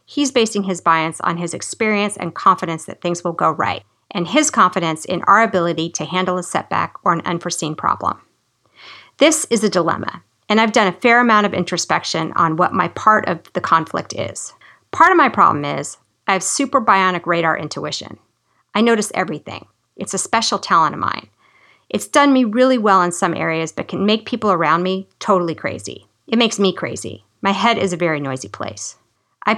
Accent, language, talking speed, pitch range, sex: American, English, 195 wpm, 175-230 Hz, female